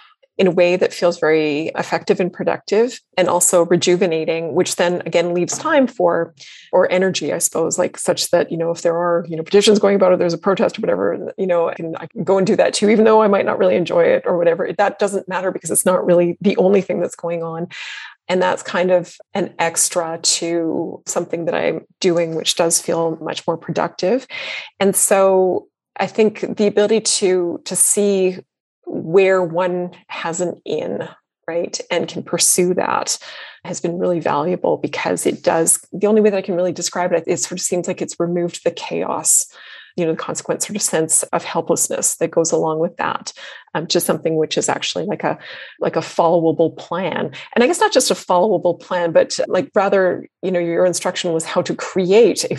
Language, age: English, 20-39